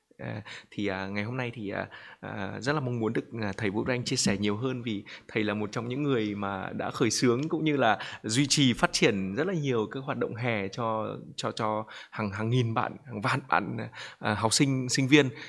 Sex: male